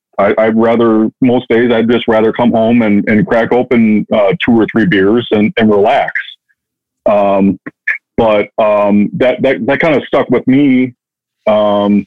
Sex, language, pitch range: male, English, 100-125 Hz